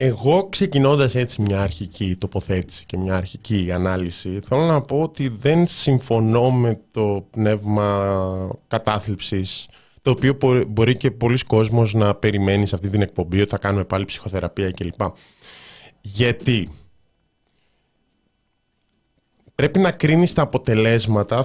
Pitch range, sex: 105-145 Hz, male